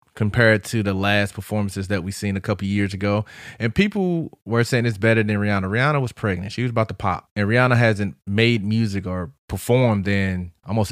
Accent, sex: American, male